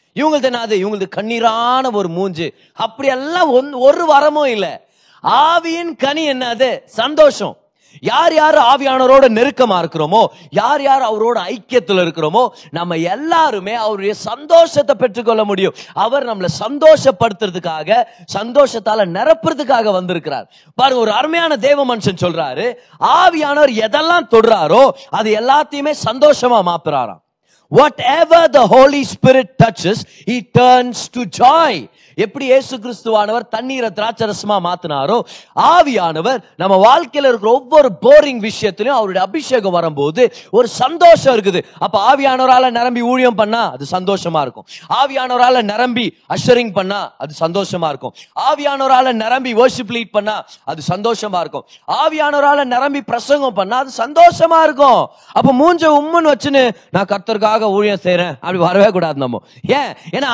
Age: 30-49